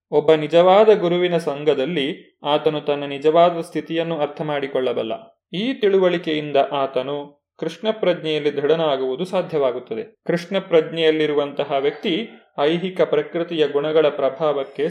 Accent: native